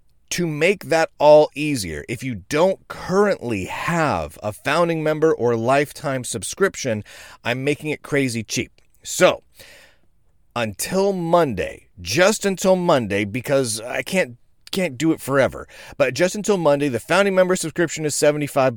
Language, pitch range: English, 120-165 Hz